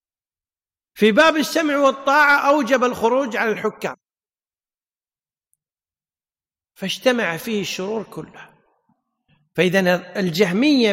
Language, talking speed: Arabic, 75 wpm